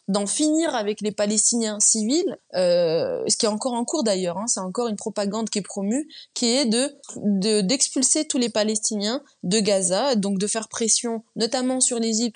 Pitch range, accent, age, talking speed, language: 195-260 Hz, French, 20-39, 195 wpm, French